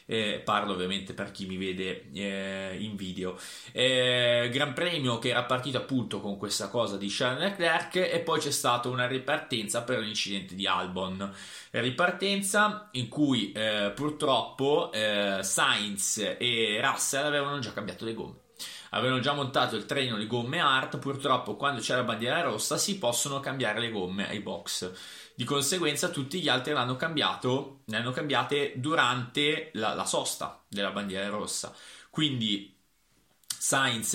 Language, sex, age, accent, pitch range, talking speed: Italian, male, 20-39, native, 105-140 Hz, 155 wpm